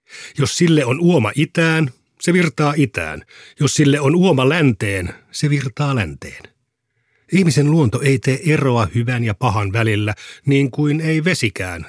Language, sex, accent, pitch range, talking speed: Finnish, male, native, 115-145 Hz, 145 wpm